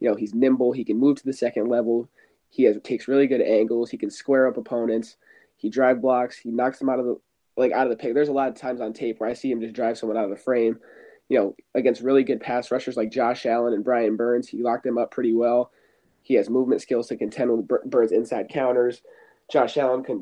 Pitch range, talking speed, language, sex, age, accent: 115-135 Hz, 255 wpm, English, male, 20-39, American